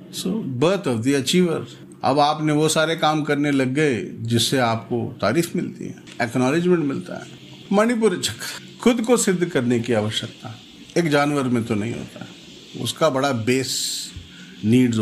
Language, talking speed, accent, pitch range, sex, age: English, 150 wpm, Indian, 120-170 Hz, male, 50-69